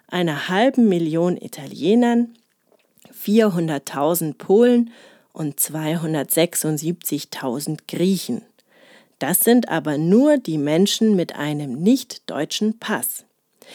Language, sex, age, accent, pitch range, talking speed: German, female, 40-59, German, 160-230 Hz, 85 wpm